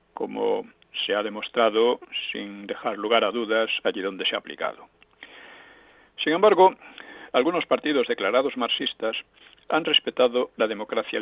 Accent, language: Spanish, Spanish